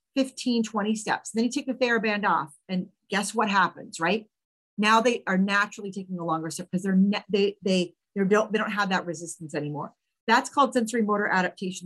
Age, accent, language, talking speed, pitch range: 40-59, American, English, 200 wpm, 175-230 Hz